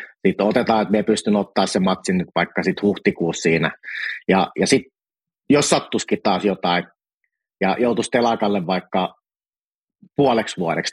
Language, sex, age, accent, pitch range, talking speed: Finnish, male, 30-49, native, 95-120 Hz, 145 wpm